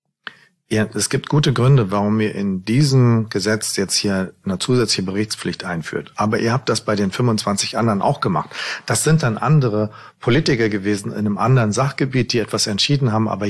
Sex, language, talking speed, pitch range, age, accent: male, German, 180 wpm, 105-125 Hz, 40-59, German